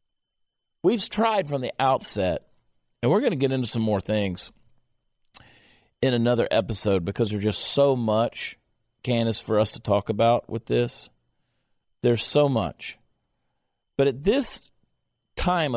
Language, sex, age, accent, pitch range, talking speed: English, male, 50-69, American, 105-130 Hz, 140 wpm